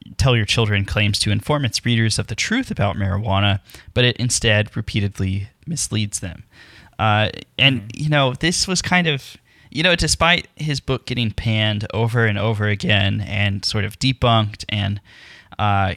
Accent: American